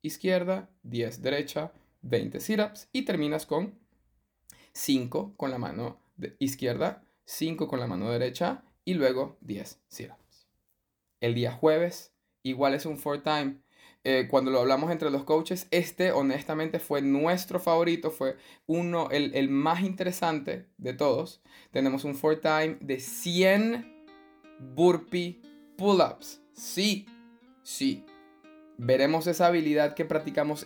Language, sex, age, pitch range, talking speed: Spanish, male, 20-39, 135-180 Hz, 130 wpm